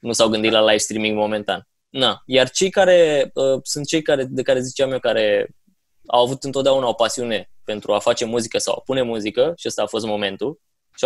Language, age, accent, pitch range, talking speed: Romanian, 20-39, native, 115-170 Hz, 195 wpm